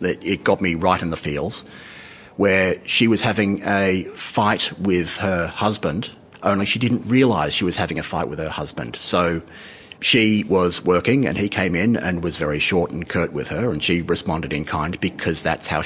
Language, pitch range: English, 85-110 Hz